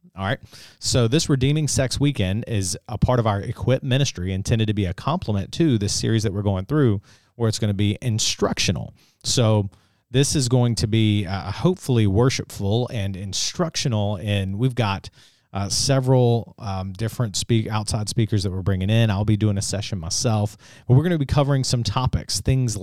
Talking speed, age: 190 wpm, 30-49